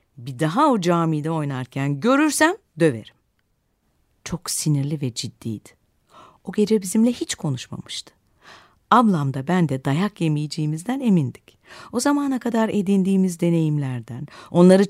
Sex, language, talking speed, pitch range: female, Turkish, 115 wpm, 145-200 Hz